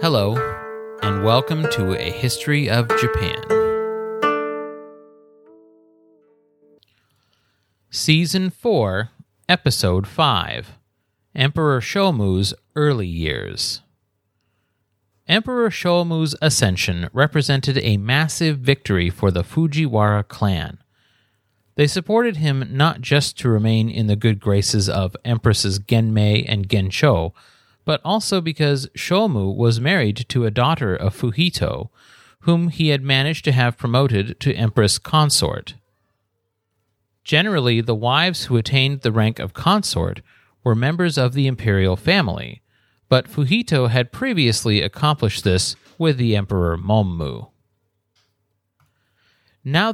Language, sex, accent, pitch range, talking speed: English, male, American, 105-150 Hz, 110 wpm